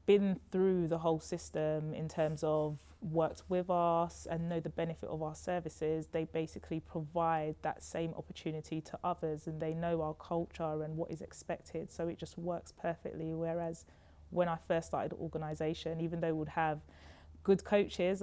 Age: 20-39